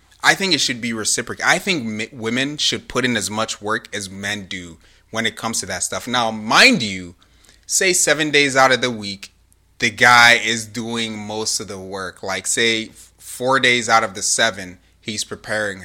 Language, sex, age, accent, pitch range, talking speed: English, male, 30-49, American, 100-135 Hz, 205 wpm